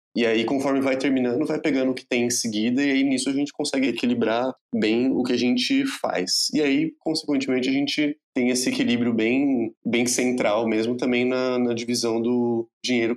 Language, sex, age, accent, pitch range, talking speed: Portuguese, male, 20-39, Brazilian, 100-135 Hz, 195 wpm